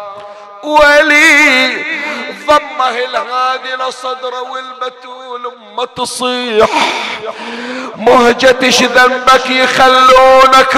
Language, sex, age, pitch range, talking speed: Arabic, male, 50-69, 205-255 Hz, 55 wpm